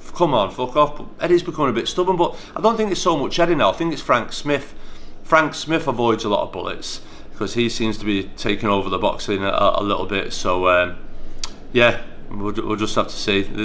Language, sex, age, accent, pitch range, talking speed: English, male, 30-49, British, 100-120 Hz, 230 wpm